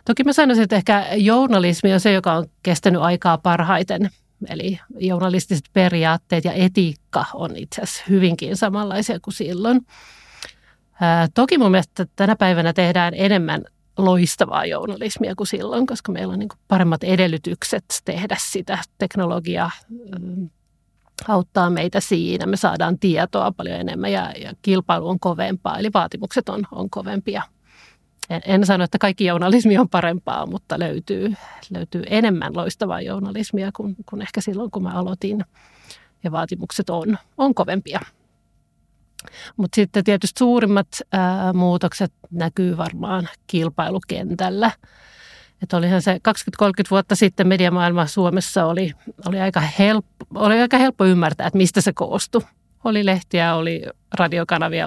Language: Finnish